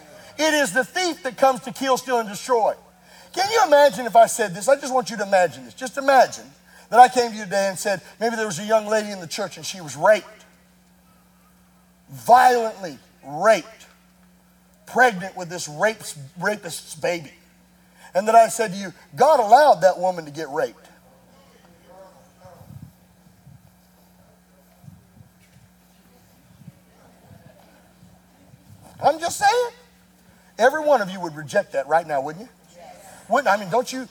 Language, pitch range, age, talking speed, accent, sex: English, 185-270 Hz, 40-59, 155 wpm, American, male